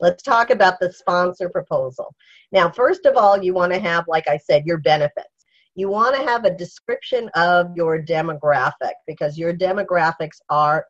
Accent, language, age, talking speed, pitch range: American, English, 50-69, 165 wpm, 170-265 Hz